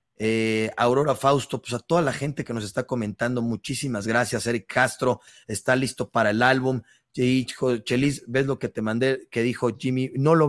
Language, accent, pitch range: Spanish, Mexican, 110-130 Hz